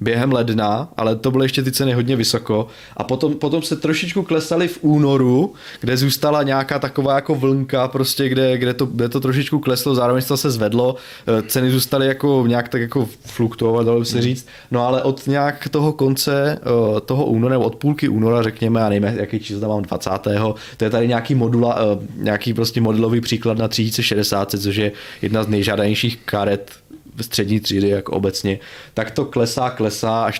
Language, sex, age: Czech, male, 20-39